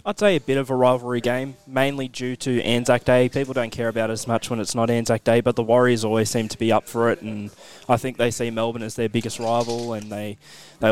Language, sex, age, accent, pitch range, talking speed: English, male, 20-39, Australian, 110-125 Hz, 265 wpm